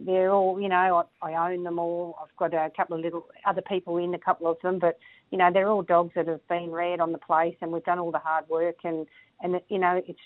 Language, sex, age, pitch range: English, female, 40-59, 160-175 Hz